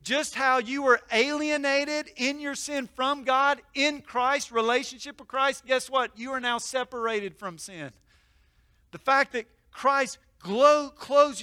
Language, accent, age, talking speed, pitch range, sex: English, American, 40-59, 145 wpm, 160-245 Hz, male